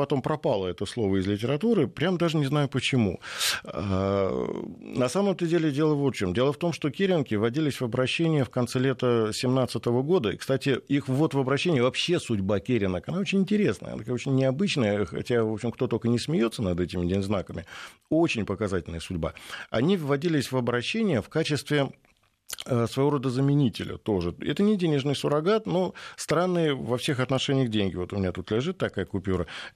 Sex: male